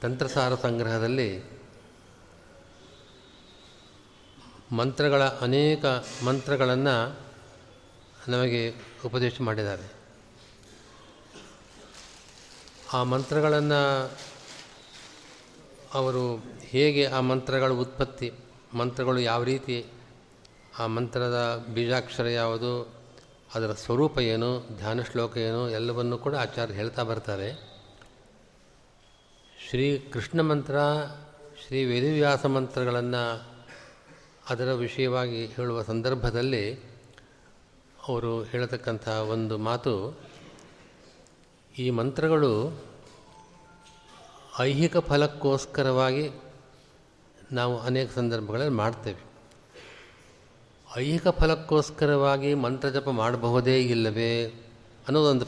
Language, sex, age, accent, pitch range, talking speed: Kannada, male, 40-59, native, 115-135 Hz, 65 wpm